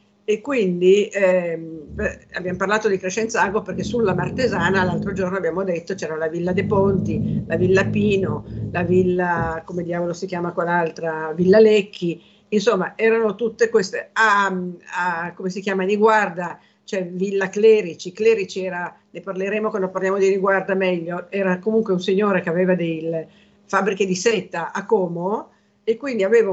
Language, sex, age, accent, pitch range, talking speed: Italian, female, 50-69, native, 180-220 Hz, 155 wpm